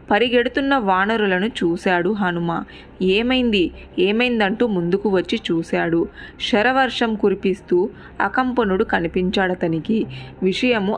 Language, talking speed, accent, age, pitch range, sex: Telugu, 75 wpm, native, 20-39, 175-220 Hz, female